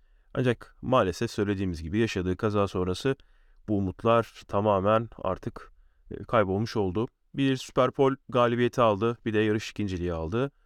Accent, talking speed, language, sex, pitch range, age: native, 125 wpm, Turkish, male, 100-125 Hz, 30-49